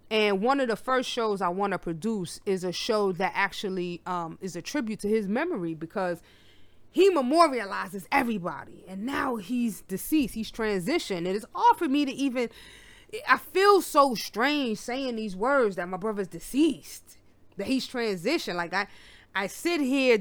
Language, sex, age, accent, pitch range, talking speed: English, female, 30-49, American, 165-220 Hz, 170 wpm